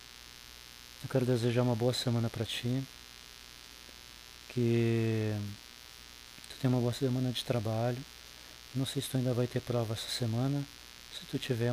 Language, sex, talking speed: Portuguese, male, 150 wpm